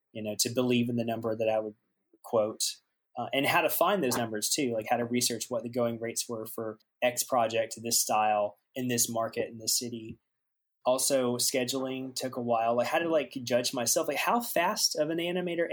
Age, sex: 20-39, male